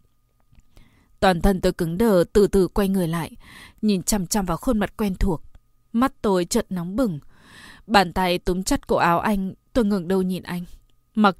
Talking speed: 190 wpm